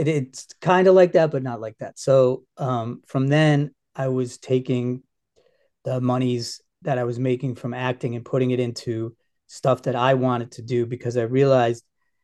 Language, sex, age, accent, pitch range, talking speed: English, male, 30-49, American, 120-135 Hz, 180 wpm